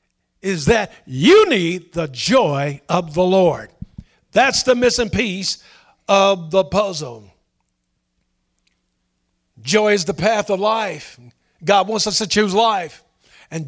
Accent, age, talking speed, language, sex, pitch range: American, 50-69, 125 wpm, English, male, 175-255 Hz